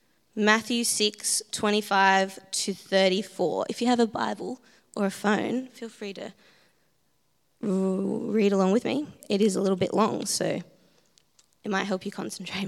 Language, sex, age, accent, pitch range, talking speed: English, female, 20-39, Australian, 195-225 Hz, 140 wpm